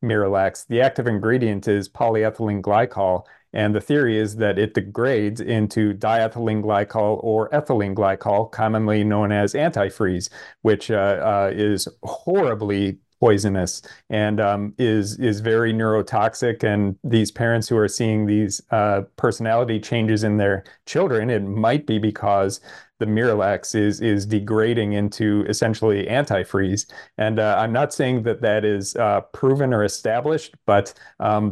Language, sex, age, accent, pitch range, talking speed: English, male, 40-59, American, 105-120 Hz, 145 wpm